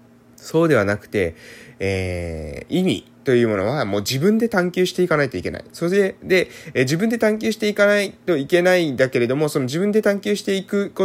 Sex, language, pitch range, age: male, Japanese, 125-190 Hz, 20-39